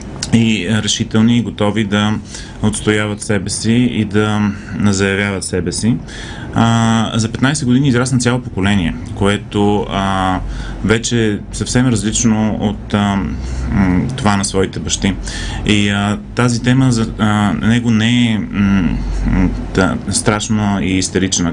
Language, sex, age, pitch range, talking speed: Bulgarian, male, 30-49, 95-115 Hz, 110 wpm